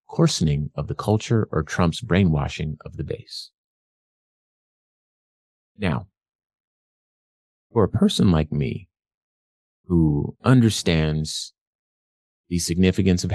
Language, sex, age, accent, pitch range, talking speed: English, male, 30-49, American, 75-105 Hz, 95 wpm